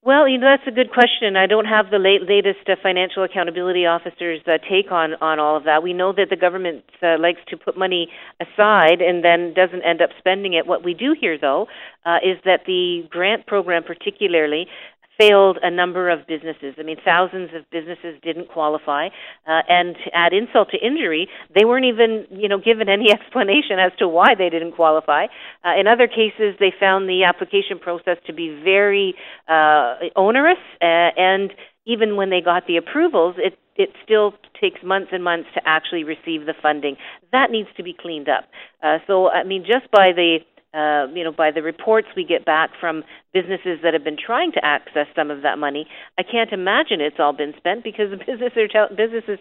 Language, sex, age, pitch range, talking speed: English, female, 50-69, 165-200 Hz, 205 wpm